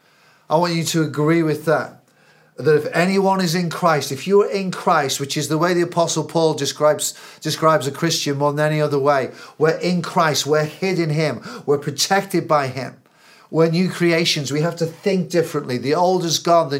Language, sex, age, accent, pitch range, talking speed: English, male, 40-59, British, 145-170 Hz, 205 wpm